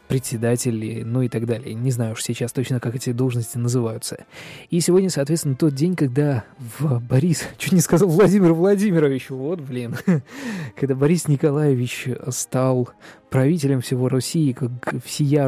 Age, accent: 20-39, native